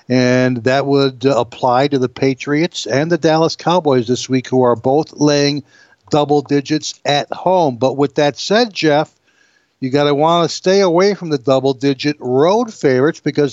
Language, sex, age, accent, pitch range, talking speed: English, male, 60-79, American, 135-160 Hz, 175 wpm